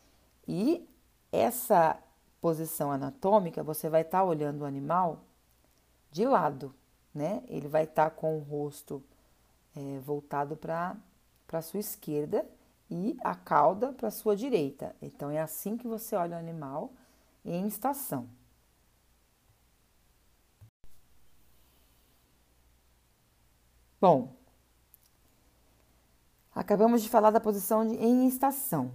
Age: 40-59